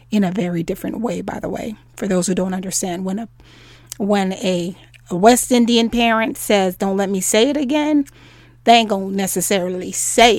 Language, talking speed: English, 190 wpm